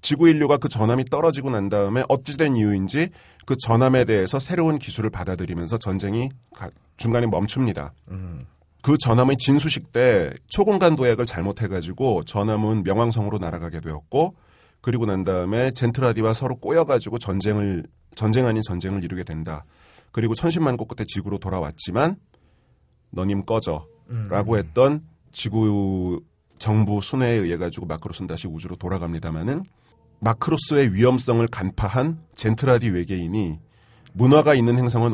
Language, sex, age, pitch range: Korean, male, 30-49, 95-125 Hz